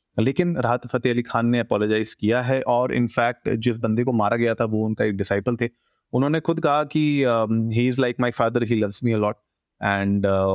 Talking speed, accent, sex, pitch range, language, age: 205 wpm, native, male, 100-120 Hz, Hindi, 30-49